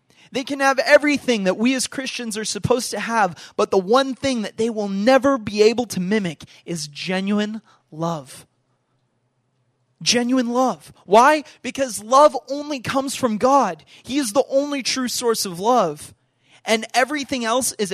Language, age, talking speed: English, 20-39, 160 wpm